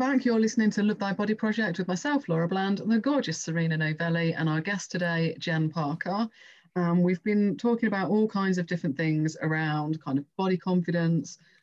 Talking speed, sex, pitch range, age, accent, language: 195 wpm, female, 155-180 Hz, 30-49, British, English